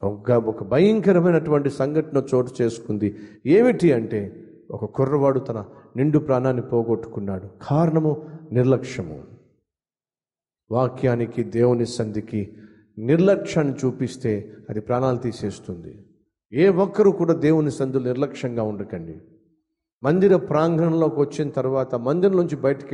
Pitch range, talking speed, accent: 110-150 Hz, 95 wpm, native